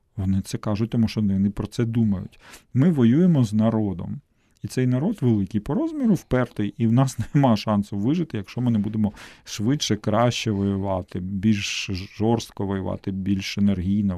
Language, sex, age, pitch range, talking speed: Ukrainian, male, 40-59, 100-120 Hz, 160 wpm